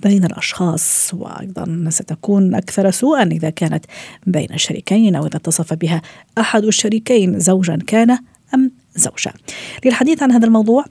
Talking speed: 125 wpm